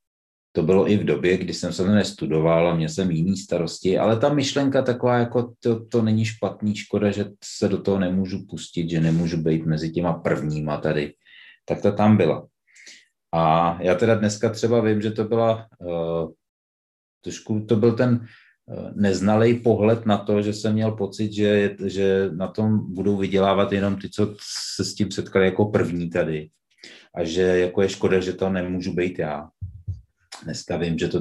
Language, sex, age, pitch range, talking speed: Czech, male, 30-49, 85-105 Hz, 180 wpm